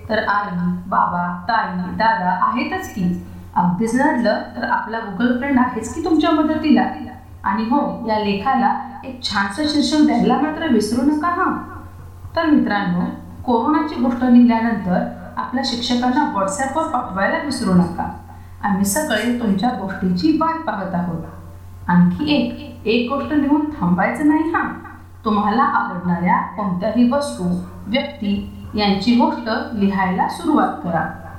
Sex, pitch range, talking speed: female, 195-270 Hz, 65 wpm